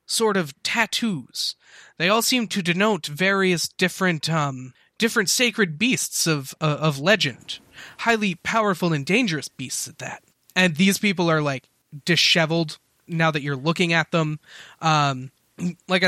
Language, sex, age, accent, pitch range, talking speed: English, male, 20-39, American, 150-185 Hz, 145 wpm